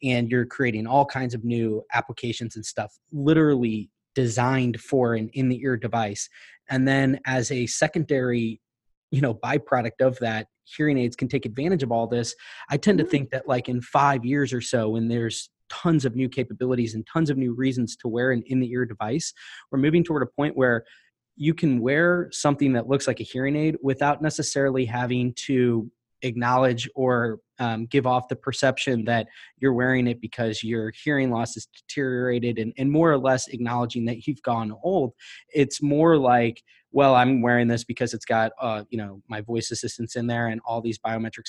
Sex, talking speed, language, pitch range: male, 190 wpm, English, 115-135 Hz